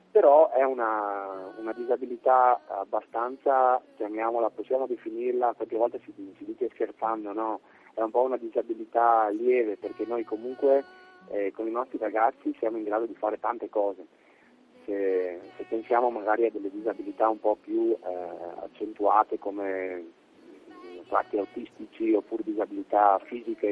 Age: 30-49